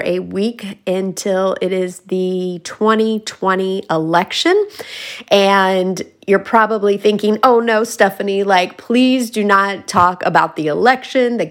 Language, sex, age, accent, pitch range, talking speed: English, female, 30-49, American, 180-225 Hz, 125 wpm